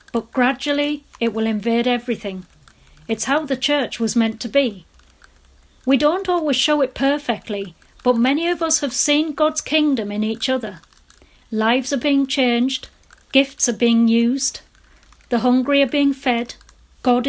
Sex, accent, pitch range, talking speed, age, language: female, British, 230-275 Hz, 155 wpm, 40-59, English